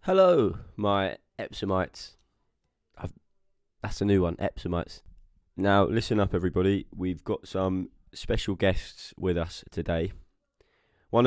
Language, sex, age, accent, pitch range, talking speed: English, male, 20-39, British, 85-105 Hz, 110 wpm